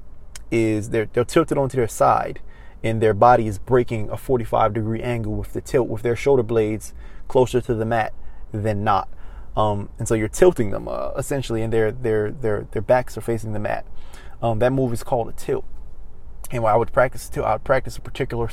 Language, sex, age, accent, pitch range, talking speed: English, male, 20-39, American, 105-120 Hz, 200 wpm